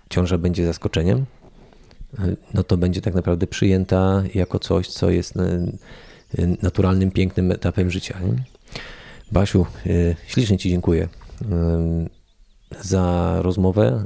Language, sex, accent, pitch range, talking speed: Polish, male, native, 90-105 Hz, 100 wpm